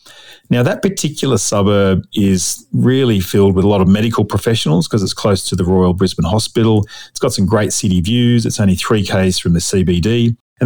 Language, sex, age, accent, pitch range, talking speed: English, male, 40-59, Australian, 90-115 Hz, 195 wpm